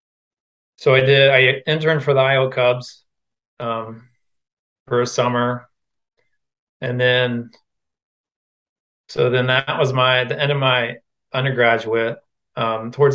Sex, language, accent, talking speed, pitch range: male, English, American, 125 wpm, 120-130 Hz